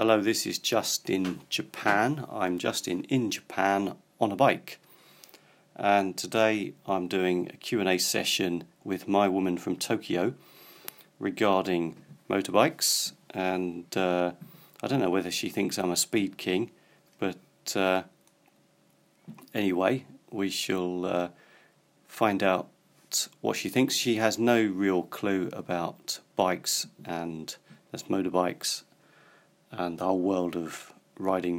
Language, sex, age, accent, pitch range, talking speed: English, male, 40-59, British, 90-105 Hz, 125 wpm